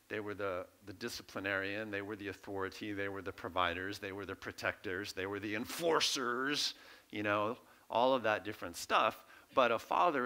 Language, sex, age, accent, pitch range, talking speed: English, male, 50-69, American, 95-125 Hz, 180 wpm